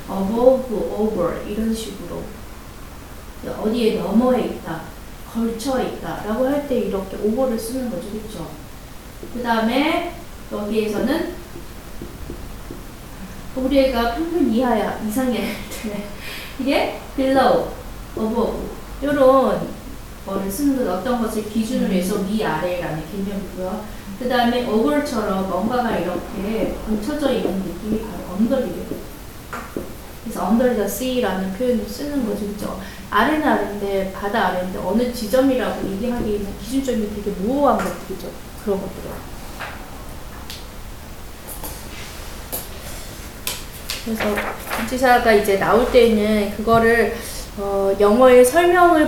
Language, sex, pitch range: Korean, female, 200-255 Hz